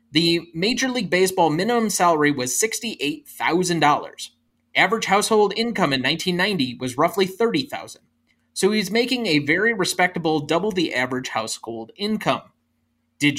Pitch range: 140-215 Hz